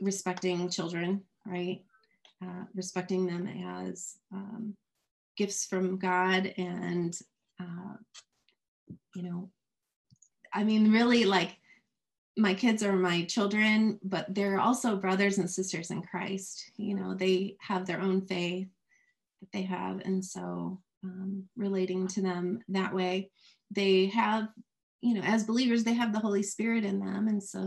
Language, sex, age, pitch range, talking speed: English, female, 30-49, 180-205 Hz, 140 wpm